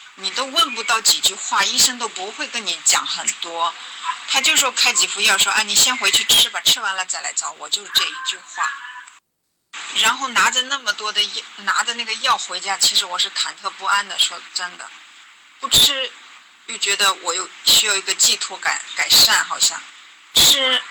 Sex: female